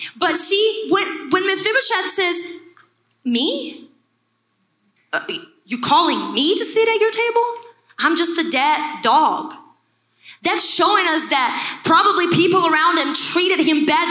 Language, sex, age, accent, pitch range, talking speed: English, female, 20-39, American, 305-355 Hz, 135 wpm